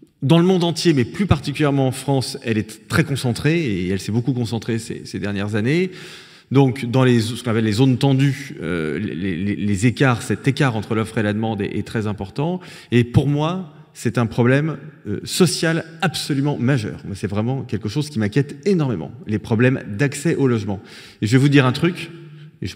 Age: 30-49